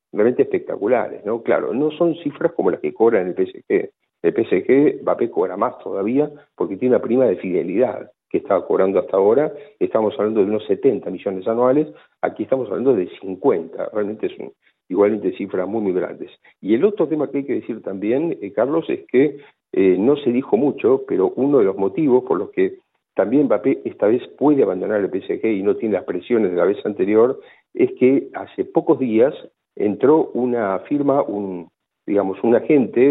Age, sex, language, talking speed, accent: 50-69, male, Spanish, 190 wpm, Argentinian